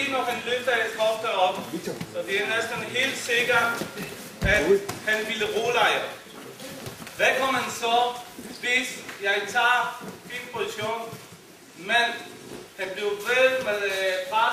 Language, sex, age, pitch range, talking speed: Danish, male, 40-59, 215-270 Hz, 125 wpm